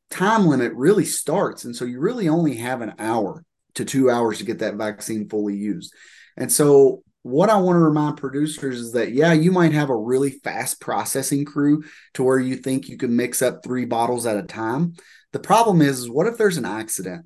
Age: 30-49